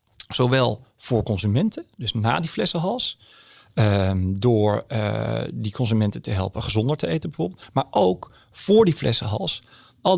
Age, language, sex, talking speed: 40-59, Dutch, male, 140 wpm